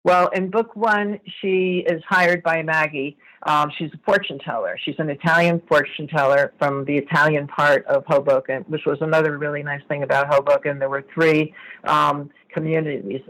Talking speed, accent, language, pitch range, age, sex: 170 wpm, American, English, 140-170 Hz, 50-69, female